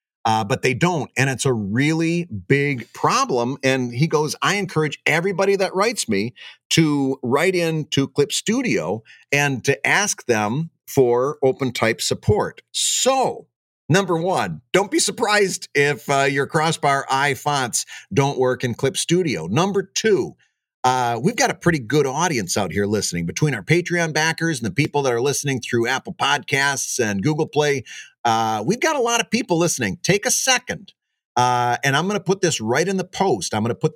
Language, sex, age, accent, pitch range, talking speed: English, male, 40-59, American, 130-175 Hz, 180 wpm